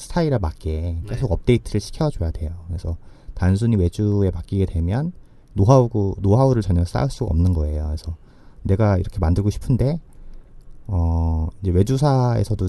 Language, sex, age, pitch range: Korean, male, 30-49, 85-115 Hz